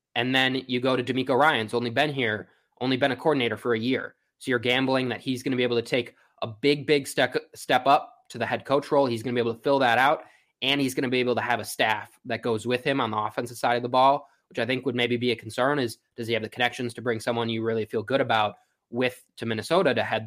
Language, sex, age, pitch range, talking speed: English, male, 20-39, 115-135 Hz, 285 wpm